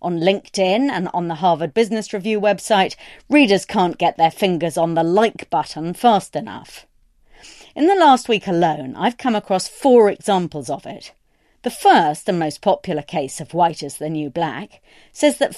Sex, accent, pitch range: female, British, 165-255 Hz